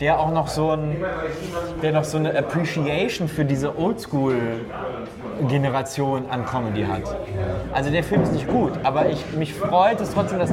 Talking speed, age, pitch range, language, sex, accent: 140 wpm, 20-39, 135-165 Hz, German, male, German